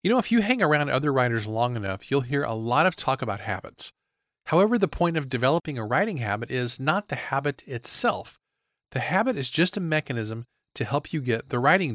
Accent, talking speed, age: American, 215 wpm, 40-59